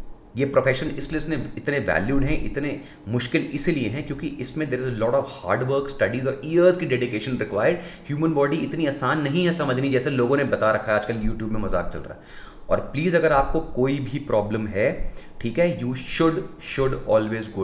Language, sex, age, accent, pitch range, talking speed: Hindi, male, 30-49, native, 95-135 Hz, 200 wpm